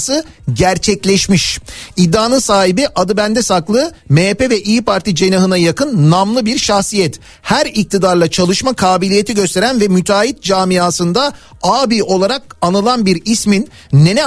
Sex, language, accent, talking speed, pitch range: male, Turkish, native, 120 wpm, 180-220 Hz